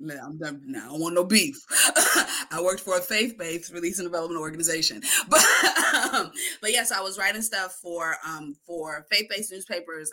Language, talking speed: English, 180 wpm